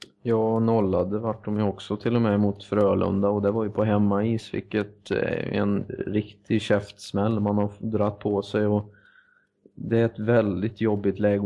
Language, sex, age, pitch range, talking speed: Swedish, male, 20-39, 100-110 Hz, 180 wpm